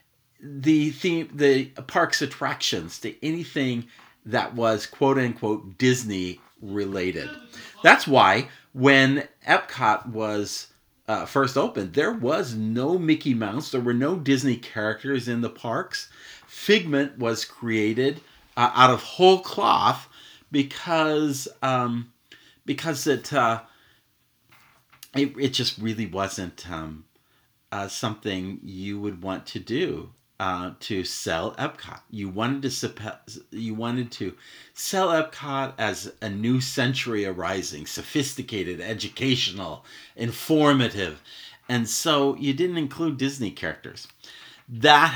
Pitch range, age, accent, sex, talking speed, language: 110-140 Hz, 40-59, American, male, 115 wpm, English